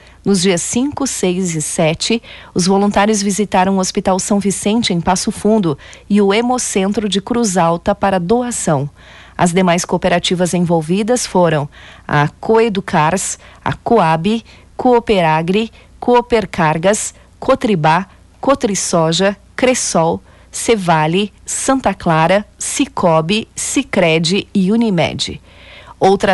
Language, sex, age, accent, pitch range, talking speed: Portuguese, female, 40-59, Brazilian, 170-215 Hz, 105 wpm